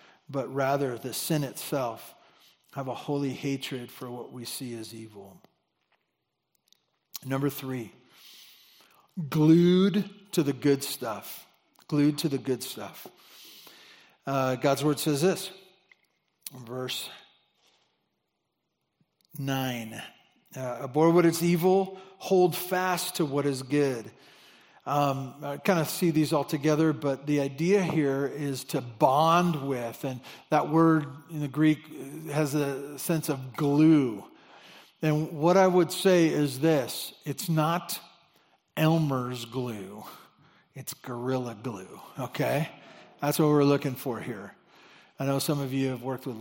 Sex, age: male, 50-69